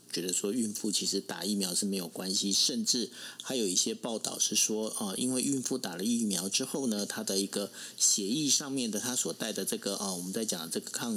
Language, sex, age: Chinese, male, 50-69